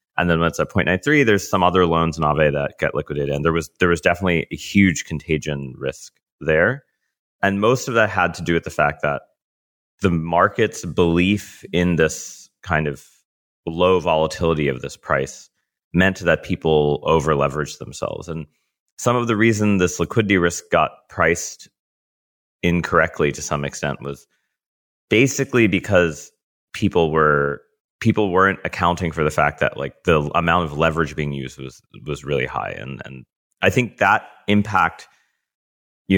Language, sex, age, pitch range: English, male, 30-49, 75-90 Hz